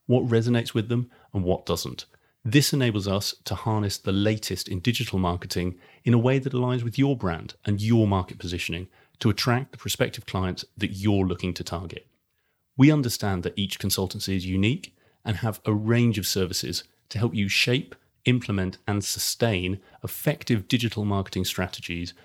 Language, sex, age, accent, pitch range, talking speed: English, male, 30-49, British, 95-115 Hz, 170 wpm